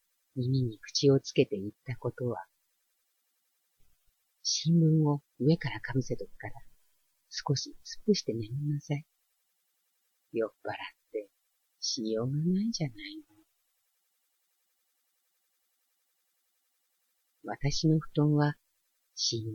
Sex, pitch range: female, 115-150 Hz